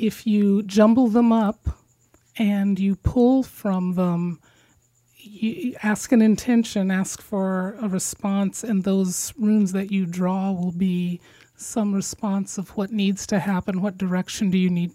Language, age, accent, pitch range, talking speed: English, 30-49, American, 180-215 Hz, 155 wpm